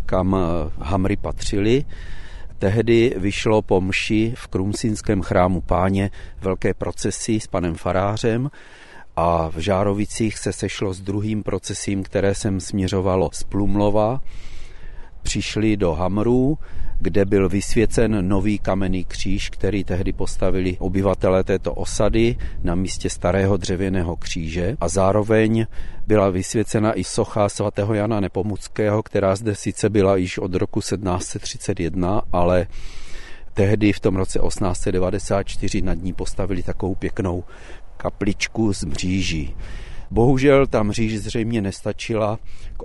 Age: 40-59